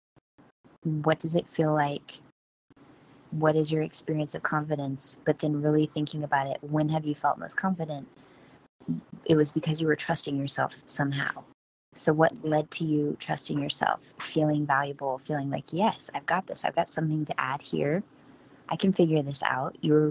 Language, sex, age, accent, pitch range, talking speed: English, female, 20-39, American, 140-155 Hz, 175 wpm